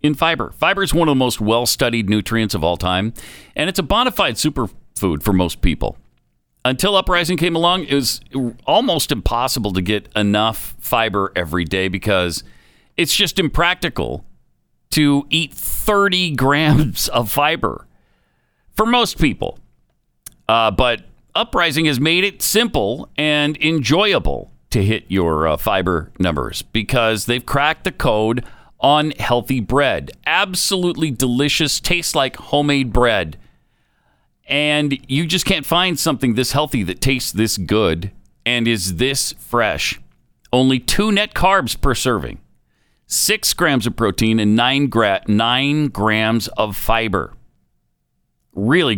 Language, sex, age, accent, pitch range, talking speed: English, male, 50-69, American, 105-155 Hz, 135 wpm